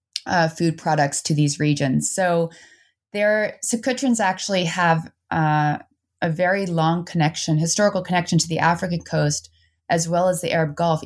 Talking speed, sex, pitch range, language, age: 150 wpm, female, 165-200 Hz, English, 20-39